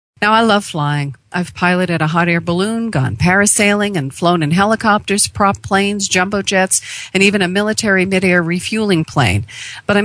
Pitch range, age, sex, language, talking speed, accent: 155-190 Hz, 40-59, female, English, 175 wpm, American